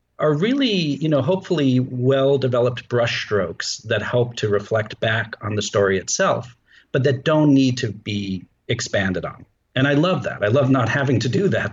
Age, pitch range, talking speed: 40-59, 110-145 Hz, 180 wpm